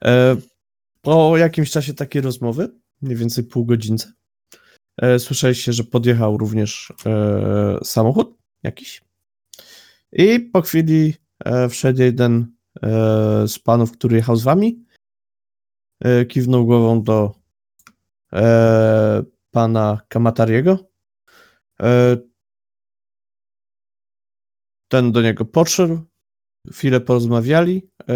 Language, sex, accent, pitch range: Polish, male, native, 115-155 Hz